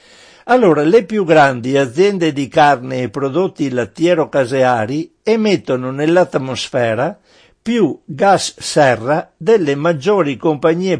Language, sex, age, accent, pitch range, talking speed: Italian, male, 60-79, native, 130-170 Hz, 105 wpm